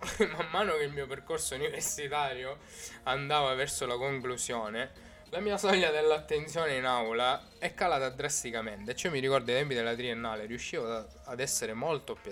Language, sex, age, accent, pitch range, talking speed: Italian, male, 10-29, native, 115-145 Hz, 160 wpm